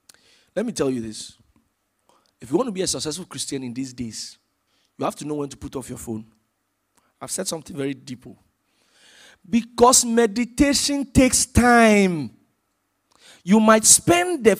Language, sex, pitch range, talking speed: English, male, 140-205 Hz, 160 wpm